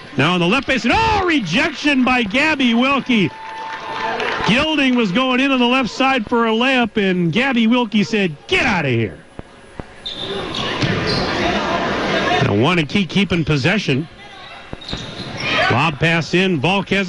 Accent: American